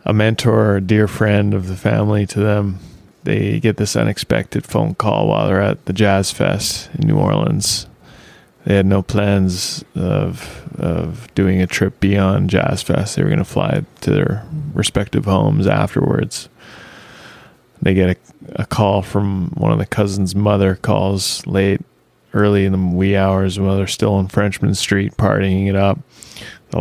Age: 20-39